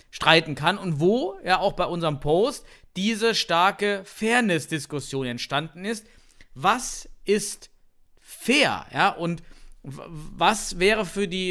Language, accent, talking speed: German, German, 120 wpm